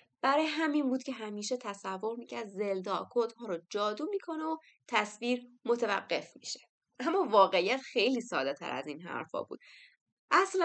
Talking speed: 140 wpm